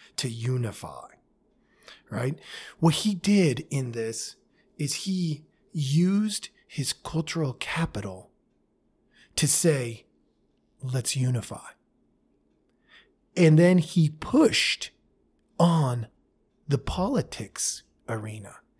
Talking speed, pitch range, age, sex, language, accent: 85 wpm, 115-155 Hz, 30-49, male, English, American